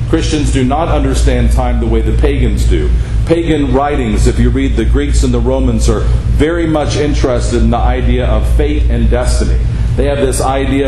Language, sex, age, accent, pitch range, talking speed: English, male, 50-69, American, 105-130 Hz, 195 wpm